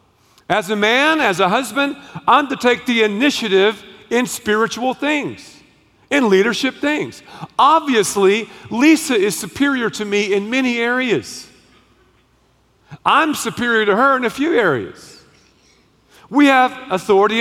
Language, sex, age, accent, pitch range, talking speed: English, male, 50-69, American, 210-290 Hz, 130 wpm